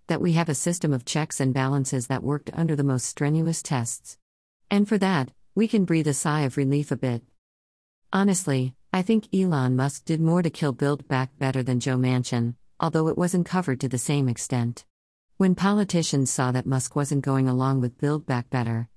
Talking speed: 195 wpm